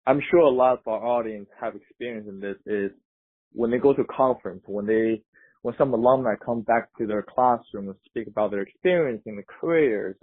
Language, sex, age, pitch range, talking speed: English, male, 20-39, 105-130 Hz, 210 wpm